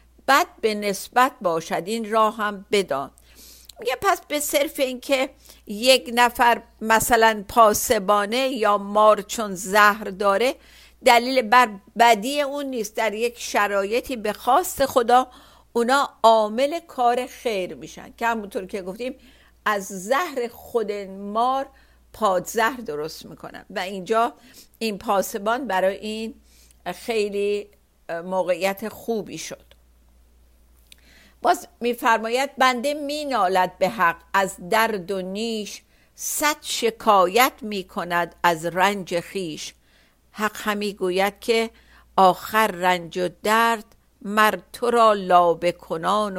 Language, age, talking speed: Persian, 50-69, 115 wpm